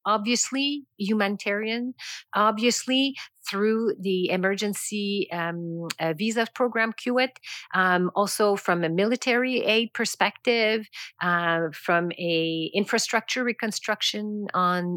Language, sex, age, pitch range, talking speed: English, female, 40-59, 185-240 Hz, 90 wpm